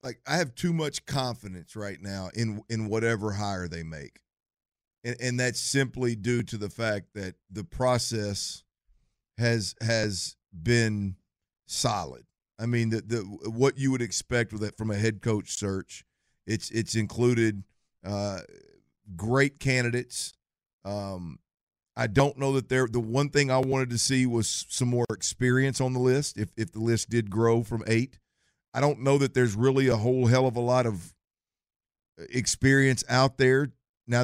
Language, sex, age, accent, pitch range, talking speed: English, male, 50-69, American, 110-135 Hz, 165 wpm